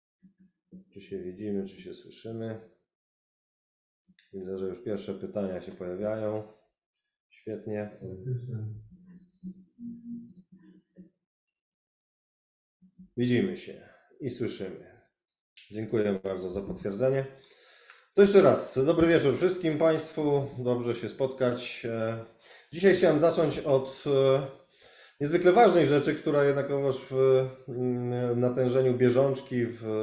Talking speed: 90 wpm